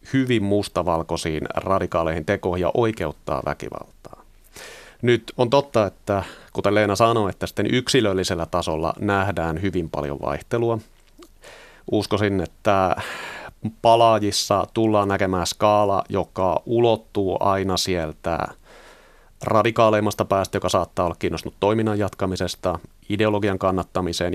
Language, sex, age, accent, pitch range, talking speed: Finnish, male, 30-49, native, 90-110 Hz, 105 wpm